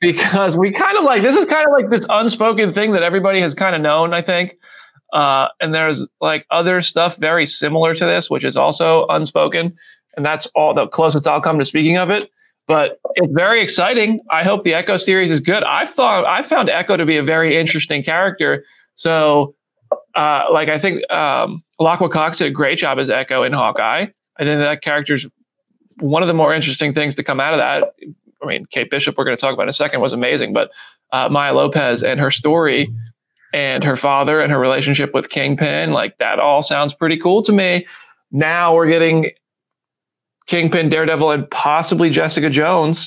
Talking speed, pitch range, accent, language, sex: 200 wpm, 155-205 Hz, American, English, male